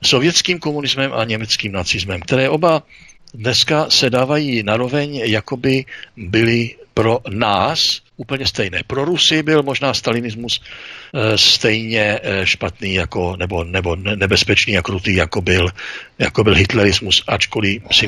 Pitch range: 100-135 Hz